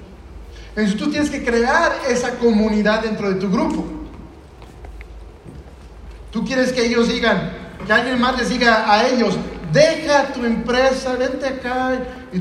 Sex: male